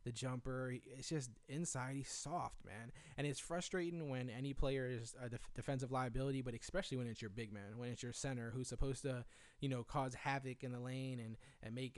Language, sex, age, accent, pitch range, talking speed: English, male, 20-39, American, 120-140 Hz, 215 wpm